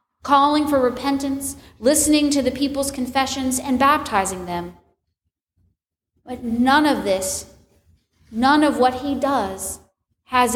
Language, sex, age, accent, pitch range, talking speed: English, female, 40-59, American, 195-285 Hz, 120 wpm